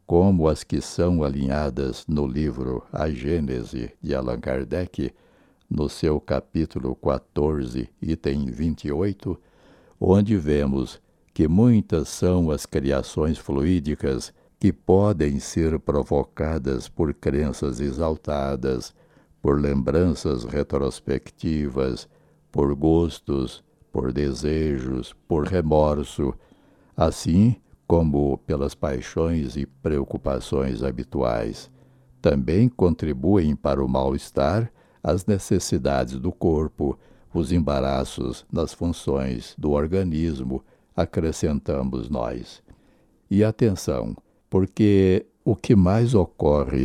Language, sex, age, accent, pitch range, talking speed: Portuguese, male, 60-79, Brazilian, 70-90 Hz, 95 wpm